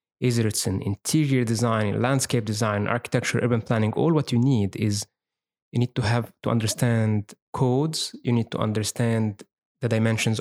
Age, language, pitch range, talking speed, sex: 20-39, English, 110-130 Hz, 160 wpm, male